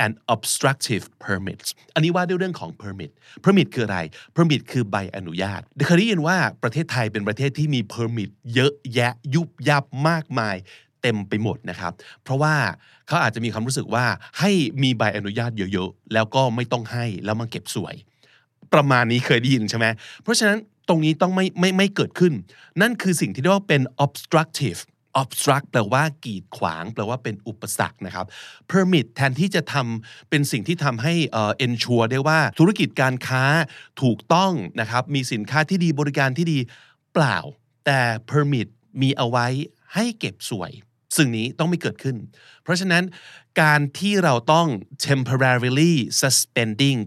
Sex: male